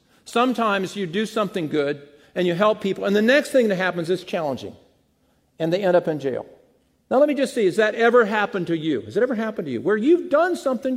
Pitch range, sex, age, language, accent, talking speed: 170-250 Hz, male, 50-69, English, American, 240 wpm